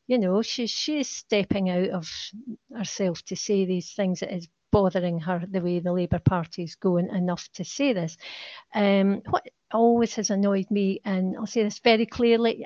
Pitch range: 190-225 Hz